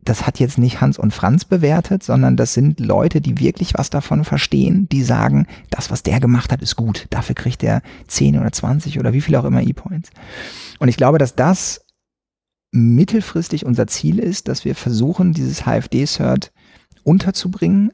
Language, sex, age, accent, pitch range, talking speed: German, male, 40-59, German, 110-145 Hz, 175 wpm